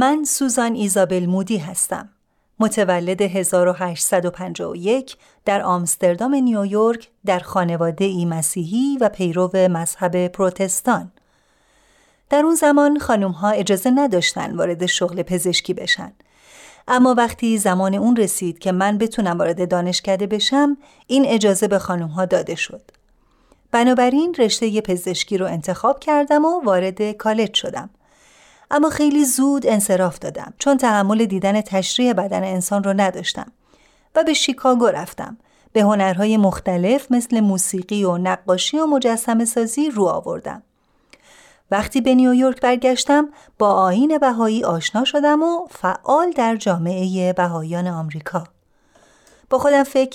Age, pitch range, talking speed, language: 40-59, 185-260 Hz, 125 wpm, Persian